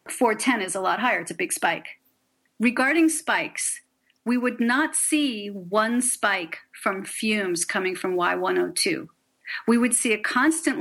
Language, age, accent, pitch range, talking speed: English, 40-59, American, 200-285 Hz, 150 wpm